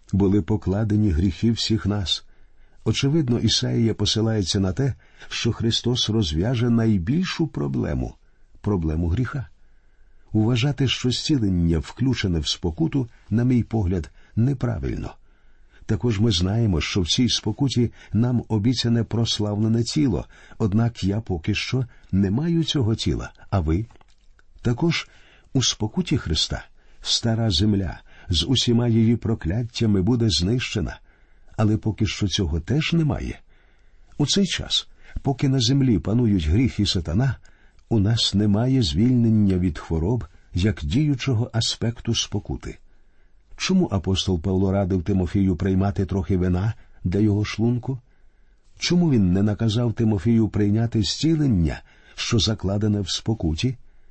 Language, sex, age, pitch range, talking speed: Ukrainian, male, 50-69, 95-120 Hz, 120 wpm